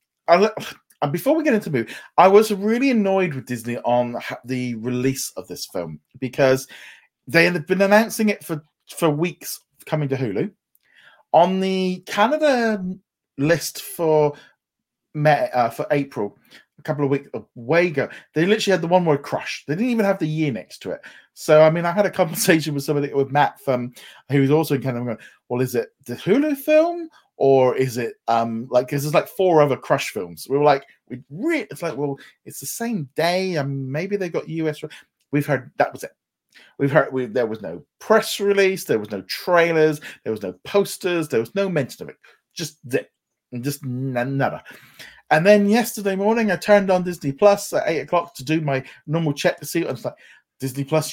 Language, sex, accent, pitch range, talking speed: English, male, British, 135-190 Hz, 205 wpm